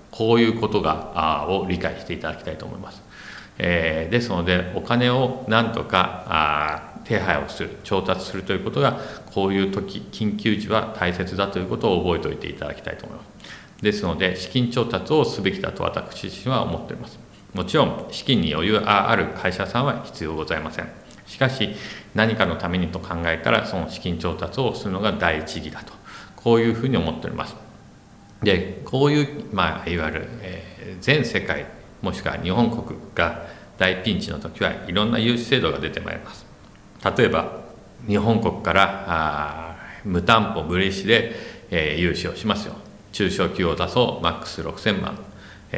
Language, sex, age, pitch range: Japanese, male, 50-69, 85-110 Hz